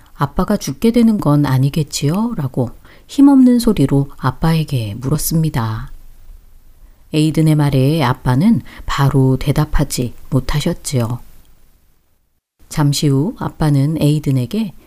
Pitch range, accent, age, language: 125-165 Hz, native, 40-59, Korean